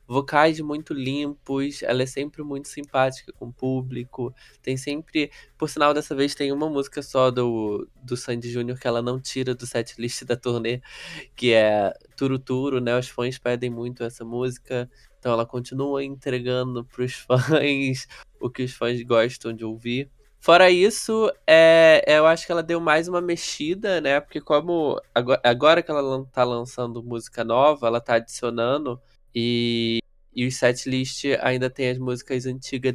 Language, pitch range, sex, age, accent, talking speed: Portuguese, 120-145 Hz, male, 20-39, Brazilian, 165 wpm